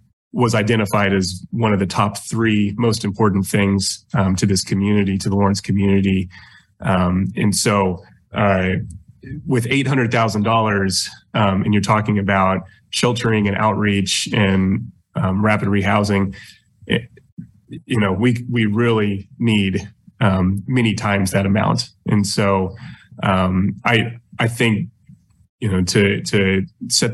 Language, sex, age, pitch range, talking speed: English, male, 30-49, 95-110 Hz, 140 wpm